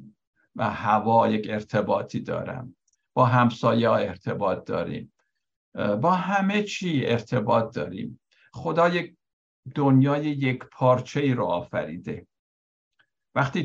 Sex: male